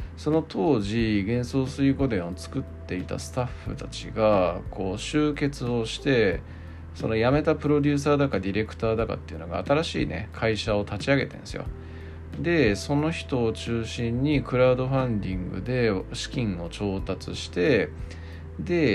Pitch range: 85-115 Hz